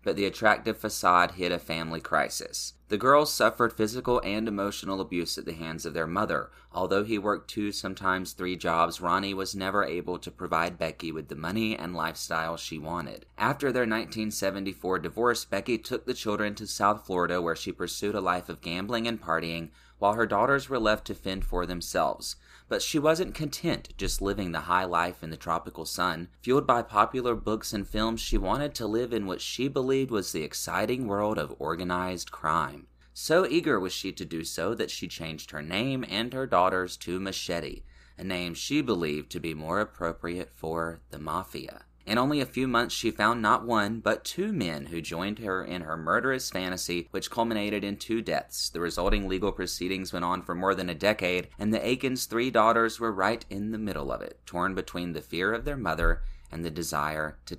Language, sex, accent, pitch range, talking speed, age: English, male, American, 85-110 Hz, 200 wpm, 30-49